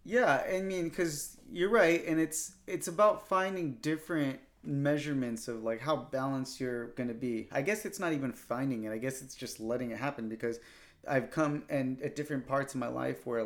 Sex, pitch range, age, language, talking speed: male, 115-135 Hz, 30-49, English, 200 wpm